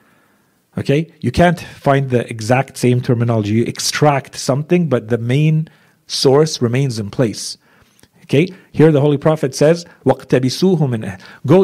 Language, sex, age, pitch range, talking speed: English, male, 50-69, 120-150 Hz, 135 wpm